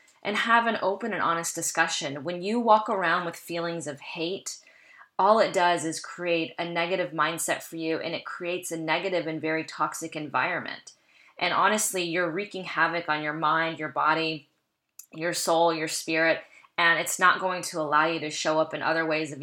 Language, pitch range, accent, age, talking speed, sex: English, 160-180 Hz, American, 20-39, 190 wpm, female